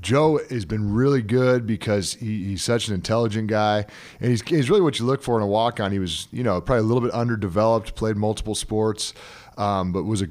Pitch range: 90-110 Hz